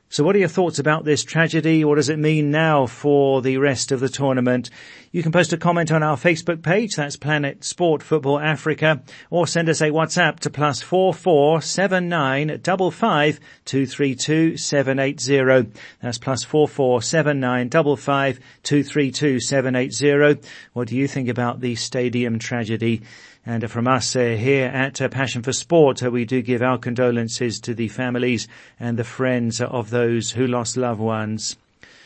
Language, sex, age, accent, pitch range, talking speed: English, male, 40-59, British, 125-155 Hz, 140 wpm